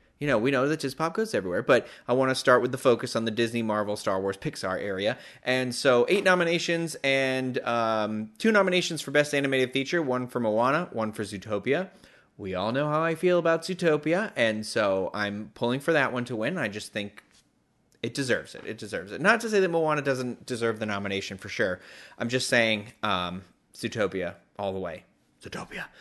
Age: 30-49